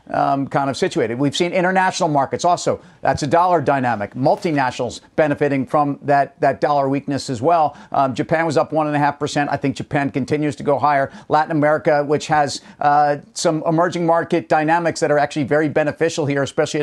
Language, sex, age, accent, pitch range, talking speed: English, male, 50-69, American, 140-165 Hz, 195 wpm